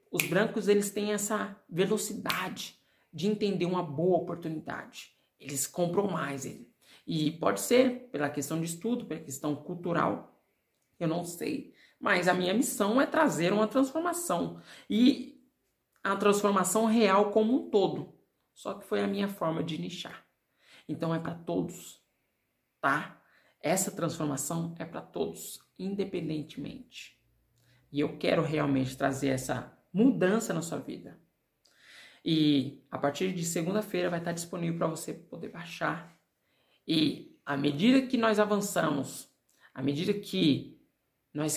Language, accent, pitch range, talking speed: Portuguese, Brazilian, 155-210 Hz, 135 wpm